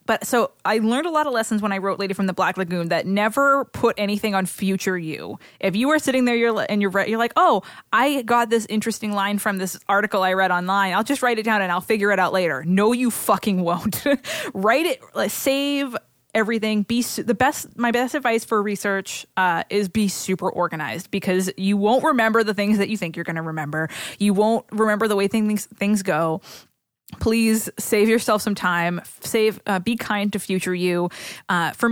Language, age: English, 20-39